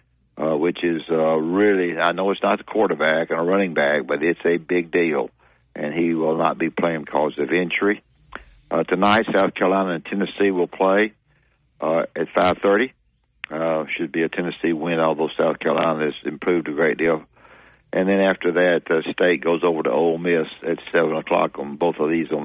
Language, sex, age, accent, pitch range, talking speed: English, male, 60-79, American, 80-90 Hz, 200 wpm